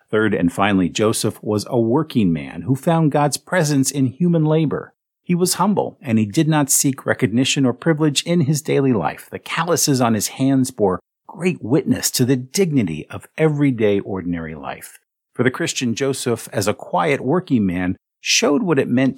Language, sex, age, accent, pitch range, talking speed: English, male, 50-69, American, 110-150 Hz, 180 wpm